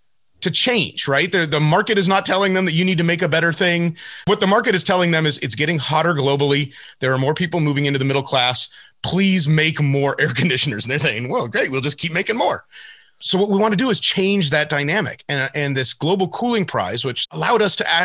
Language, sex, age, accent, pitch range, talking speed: English, male, 30-49, American, 135-185 Hz, 245 wpm